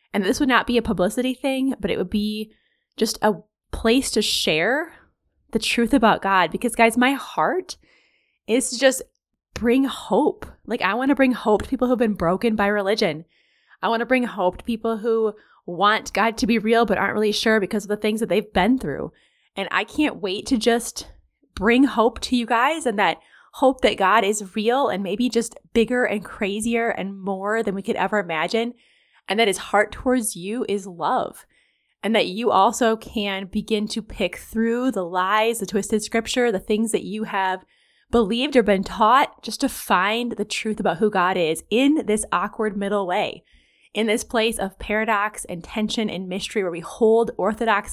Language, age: English, 20-39